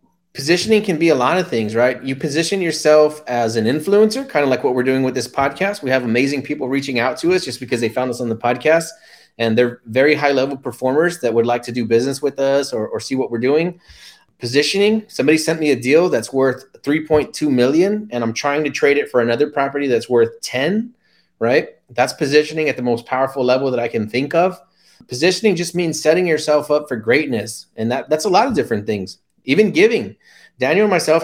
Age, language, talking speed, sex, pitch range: 30-49, English, 220 wpm, male, 120-160 Hz